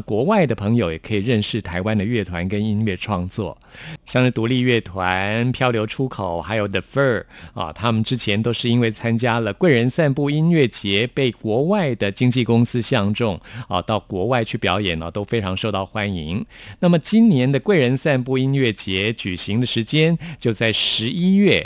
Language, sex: Chinese, male